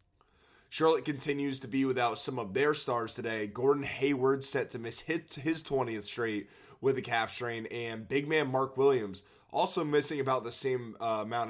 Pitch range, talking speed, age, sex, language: 110-135 Hz, 175 wpm, 20-39, male, English